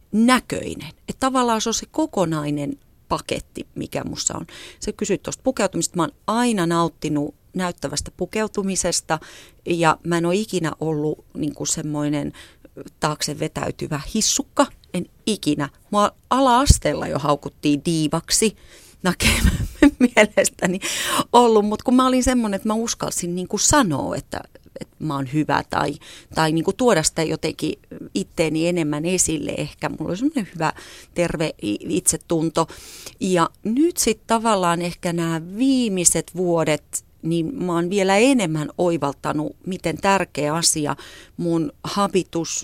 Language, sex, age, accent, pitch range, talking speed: Finnish, female, 30-49, native, 155-205 Hz, 125 wpm